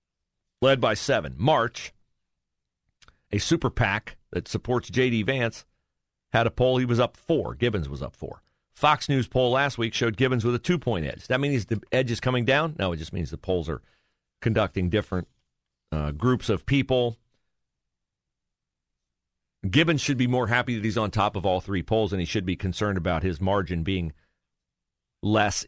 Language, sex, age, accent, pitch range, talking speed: English, male, 50-69, American, 90-130 Hz, 180 wpm